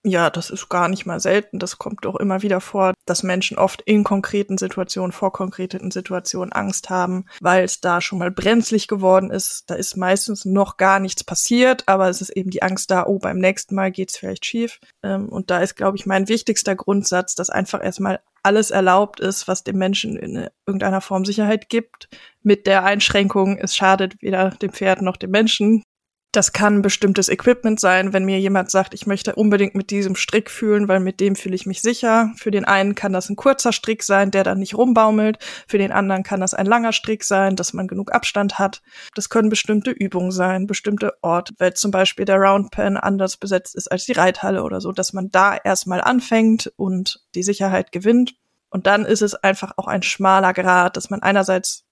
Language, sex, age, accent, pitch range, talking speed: German, female, 20-39, German, 190-210 Hz, 205 wpm